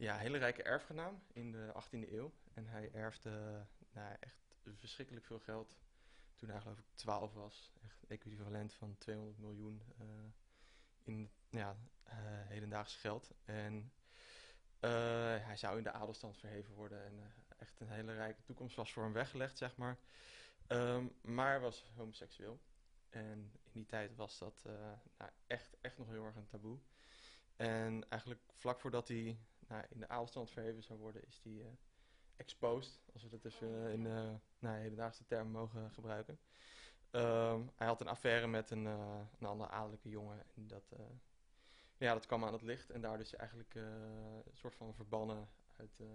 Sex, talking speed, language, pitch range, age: male, 170 wpm, Dutch, 105-120 Hz, 20-39